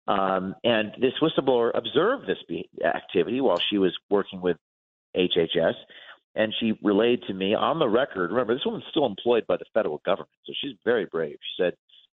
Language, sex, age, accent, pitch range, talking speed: English, male, 40-59, American, 95-130 Hz, 180 wpm